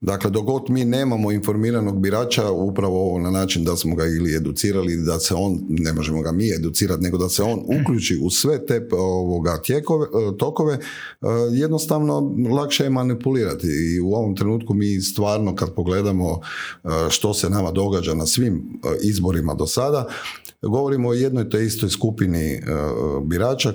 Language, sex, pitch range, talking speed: Croatian, male, 90-125 Hz, 150 wpm